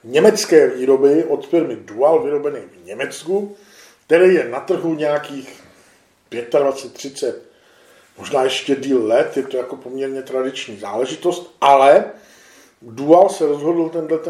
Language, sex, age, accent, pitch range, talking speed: Czech, male, 40-59, native, 140-165 Hz, 120 wpm